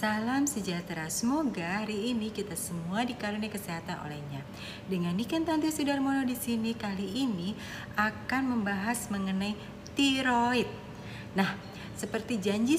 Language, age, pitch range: Indonesian, 30-49, 185-235 Hz